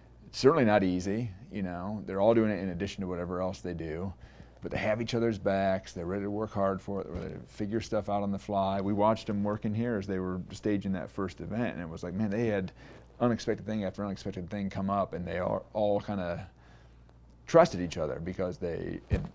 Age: 30-49